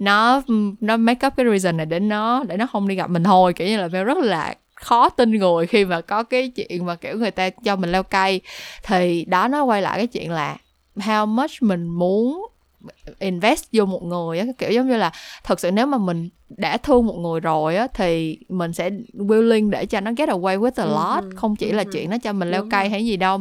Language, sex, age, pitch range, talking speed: Vietnamese, female, 20-39, 175-235 Hz, 240 wpm